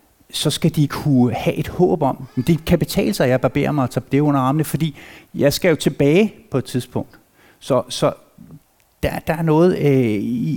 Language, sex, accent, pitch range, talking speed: Danish, male, native, 110-145 Hz, 210 wpm